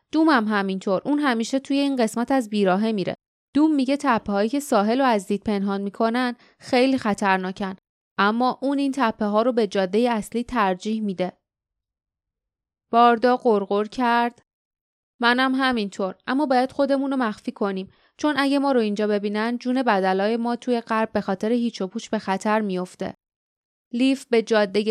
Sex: female